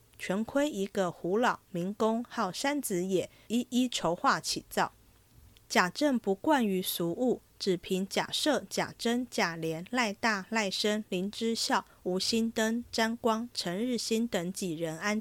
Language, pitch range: Chinese, 175-240 Hz